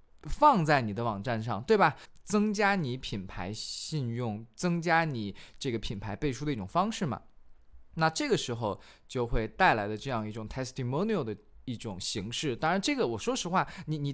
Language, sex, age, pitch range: Chinese, male, 20-39, 115-165 Hz